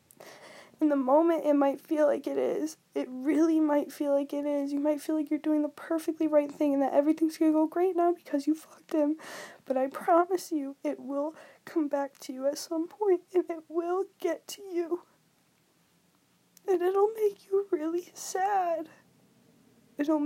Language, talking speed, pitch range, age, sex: English, 190 wpm, 305-395 Hz, 20-39, female